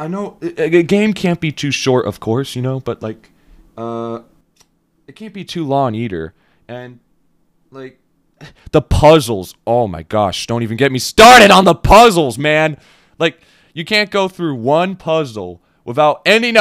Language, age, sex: English, 20-39, male